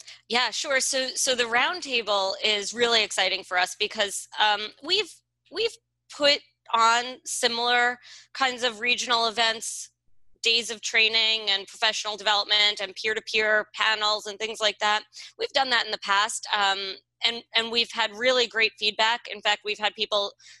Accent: American